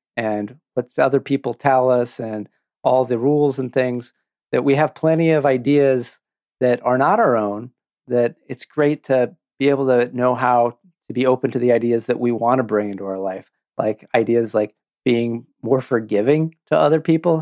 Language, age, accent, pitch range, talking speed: English, 40-59, American, 115-140 Hz, 190 wpm